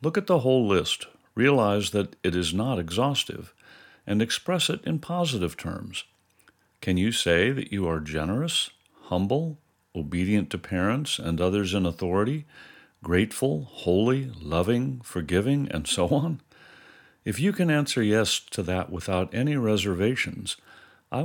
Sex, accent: male, American